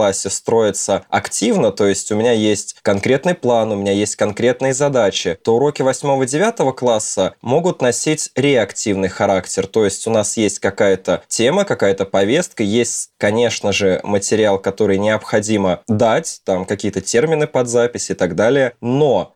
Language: Russian